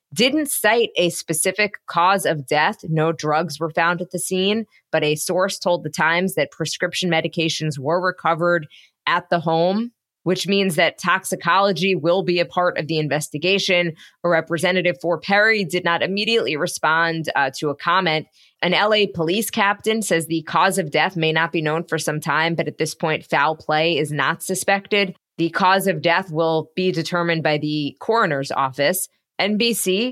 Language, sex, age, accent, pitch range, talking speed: English, female, 20-39, American, 160-195 Hz, 175 wpm